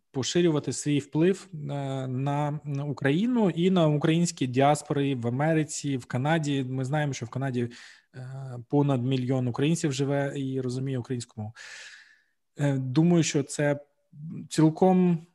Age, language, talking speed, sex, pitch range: 20-39, Ukrainian, 115 wpm, male, 135-170 Hz